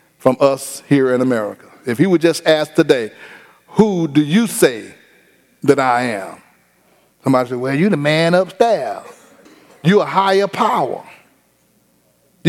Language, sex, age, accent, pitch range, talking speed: English, male, 40-59, American, 150-205 Hz, 145 wpm